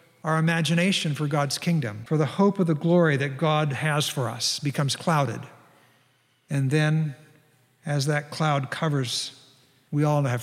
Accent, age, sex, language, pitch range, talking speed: American, 60-79, male, English, 130-160 Hz, 155 wpm